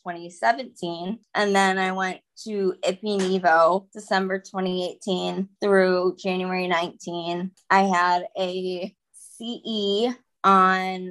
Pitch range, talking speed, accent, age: 180-200 Hz, 90 wpm, American, 20-39